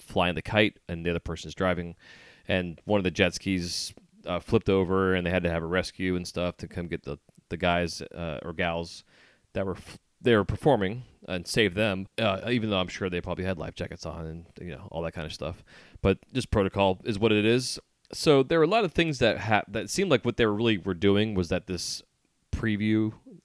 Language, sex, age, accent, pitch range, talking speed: English, male, 30-49, American, 85-110 Hz, 235 wpm